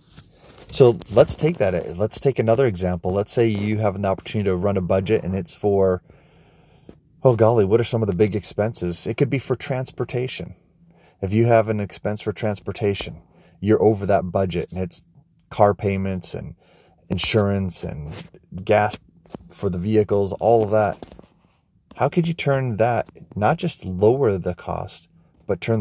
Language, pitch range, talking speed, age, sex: English, 95-115 Hz, 165 wpm, 30-49, male